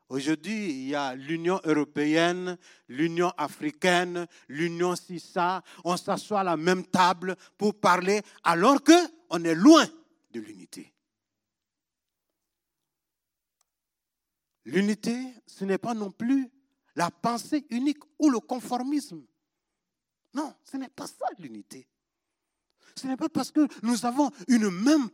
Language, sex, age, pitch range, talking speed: French, male, 60-79, 180-290 Hz, 125 wpm